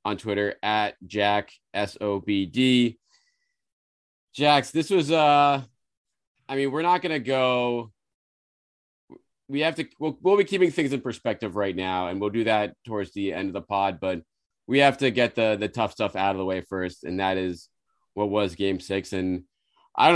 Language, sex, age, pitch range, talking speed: English, male, 30-49, 100-130 Hz, 195 wpm